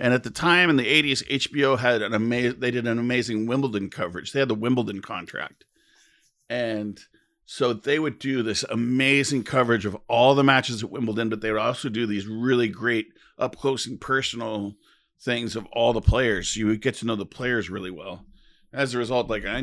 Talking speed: 205 wpm